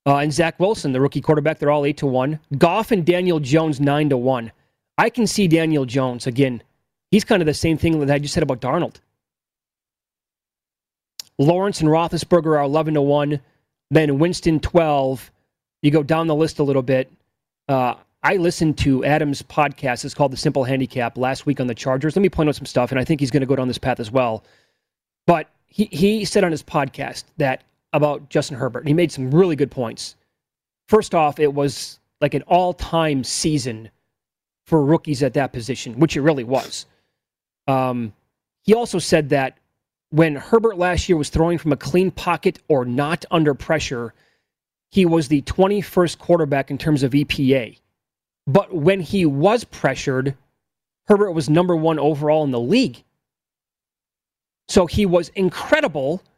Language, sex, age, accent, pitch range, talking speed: English, male, 30-49, American, 135-170 Hz, 175 wpm